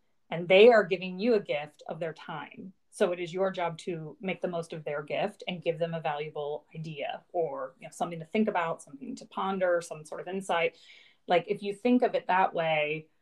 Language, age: English, 30-49